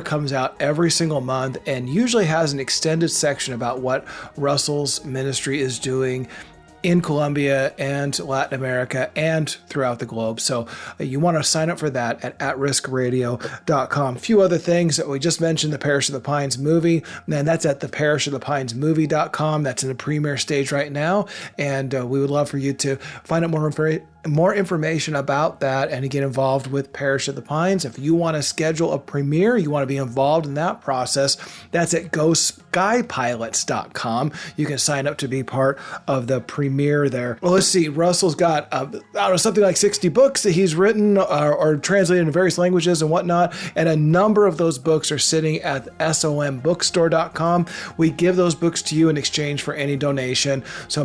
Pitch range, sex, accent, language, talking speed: 140-170 Hz, male, American, English, 195 wpm